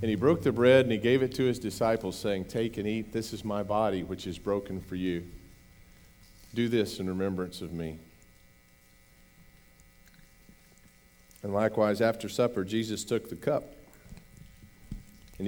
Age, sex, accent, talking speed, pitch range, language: 50-69, male, American, 155 wpm, 90-110 Hz, English